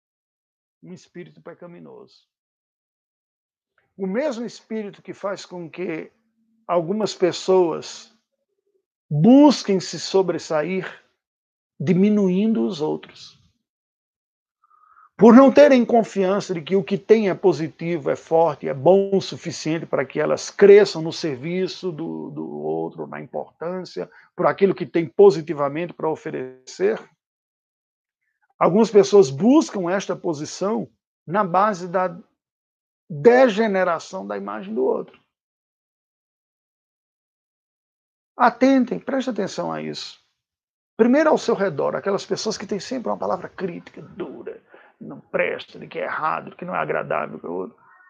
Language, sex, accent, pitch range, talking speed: Portuguese, male, Brazilian, 170-225 Hz, 120 wpm